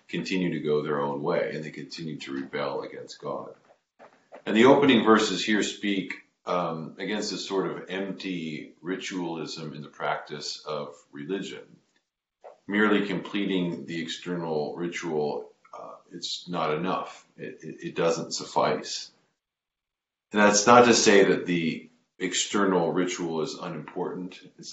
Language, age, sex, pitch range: English, 40-59, male, 80-100 Hz